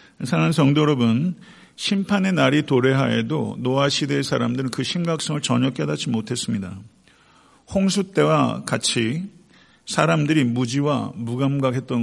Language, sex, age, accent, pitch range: Korean, male, 50-69, native, 115-145 Hz